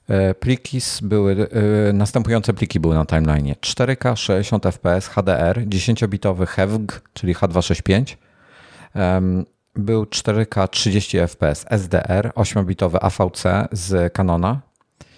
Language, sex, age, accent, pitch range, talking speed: Polish, male, 50-69, native, 90-105 Hz, 80 wpm